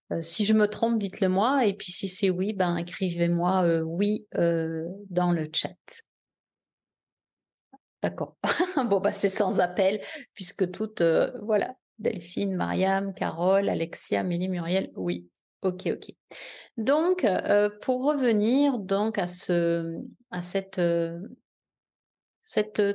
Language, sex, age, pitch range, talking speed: French, female, 30-49, 180-220 Hz, 130 wpm